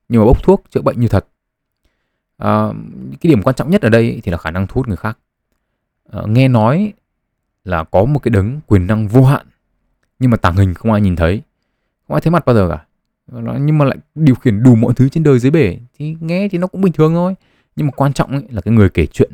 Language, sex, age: Vietnamese, male, 20-39